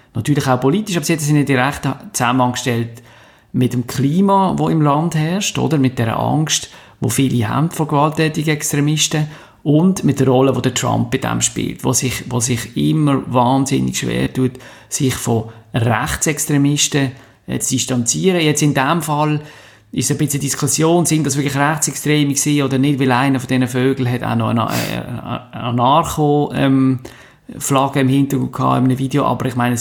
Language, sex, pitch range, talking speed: German, male, 125-145 Hz, 165 wpm